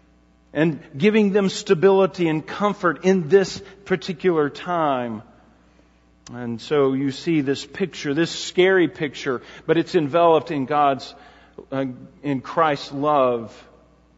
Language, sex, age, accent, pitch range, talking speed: English, male, 40-59, American, 130-175 Hz, 120 wpm